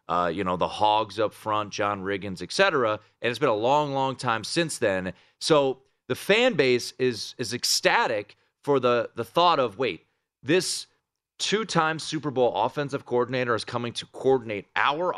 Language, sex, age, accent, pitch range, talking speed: English, male, 30-49, American, 105-135 Hz, 175 wpm